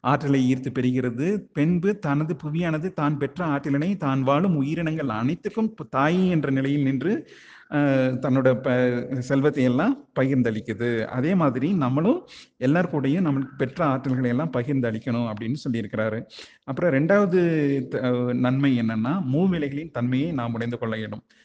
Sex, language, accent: male, Tamil, native